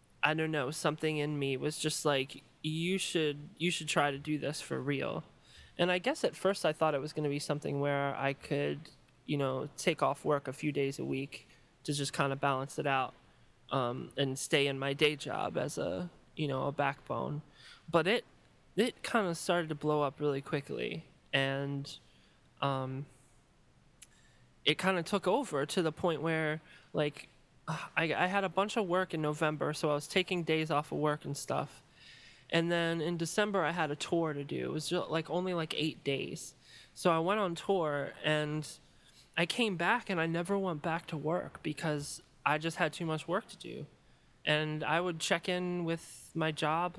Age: 20-39